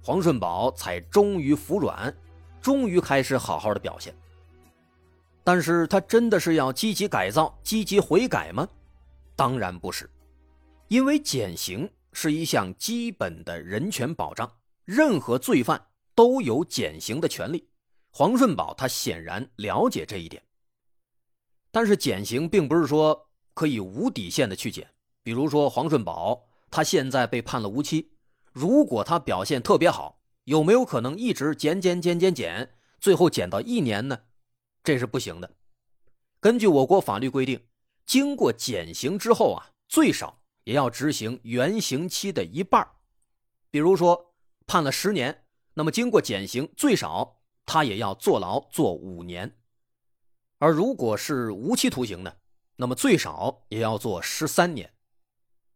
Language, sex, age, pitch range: Chinese, male, 30-49, 115-175 Hz